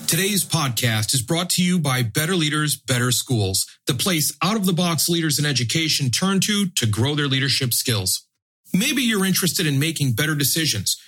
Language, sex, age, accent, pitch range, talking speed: English, male, 40-59, American, 115-155 Hz, 170 wpm